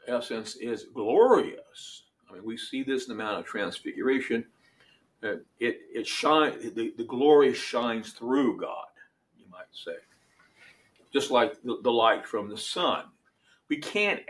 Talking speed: 150 wpm